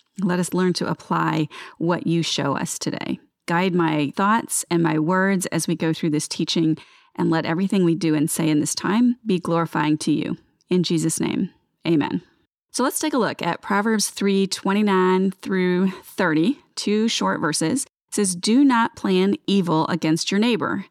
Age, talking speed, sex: 30-49, 180 wpm, female